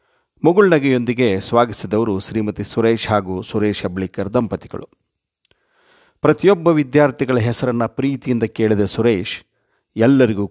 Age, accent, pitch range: 50-69, native, 100-130 Hz